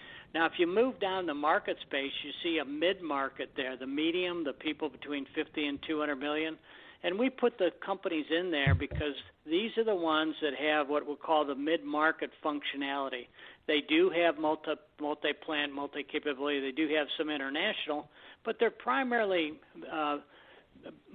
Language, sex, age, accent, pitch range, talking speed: English, male, 60-79, American, 145-170 Hz, 165 wpm